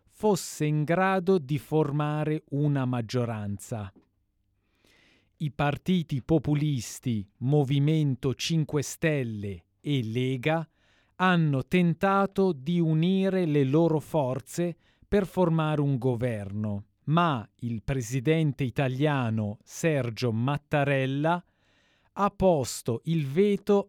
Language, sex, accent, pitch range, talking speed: Italian, male, native, 125-165 Hz, 90 wpm